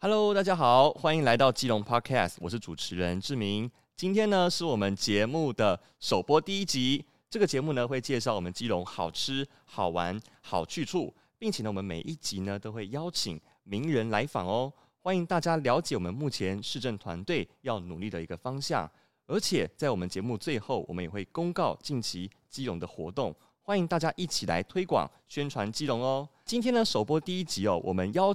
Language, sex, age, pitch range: Chinese, male, 30-49, 105-165 Hz